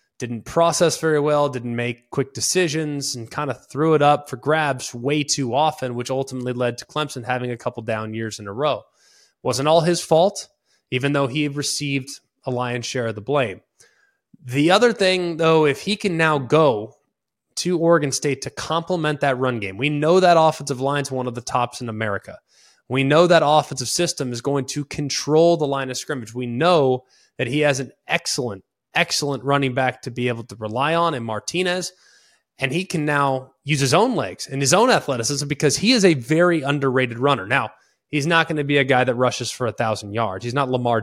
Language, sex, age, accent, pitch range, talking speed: English, male, 20-39, American, 125-165 Hz, 210 wpm